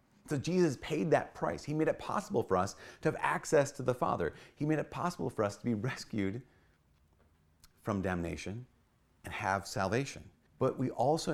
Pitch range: 90-135 Hz